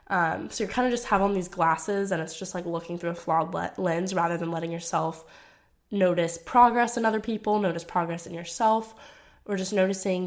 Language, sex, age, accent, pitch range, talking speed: English, female, 10-29, American, 170-205 Hz, 205 wpm